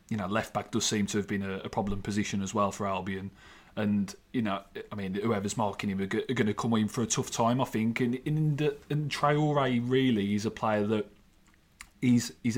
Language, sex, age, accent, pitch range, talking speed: English, male, 30-49, British, 105-120 Hz, 235 wpm